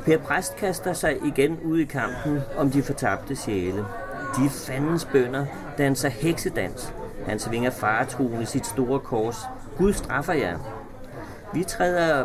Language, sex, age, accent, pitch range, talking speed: Danish, male, 30-49, native, 125-155 Hz, 145 wpm